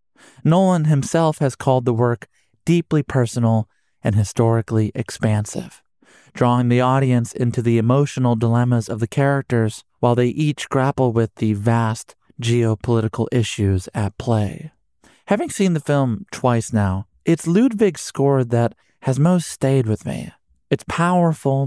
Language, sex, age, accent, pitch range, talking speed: English, male, 30-49, American, 115-140 Hz, 135 wpm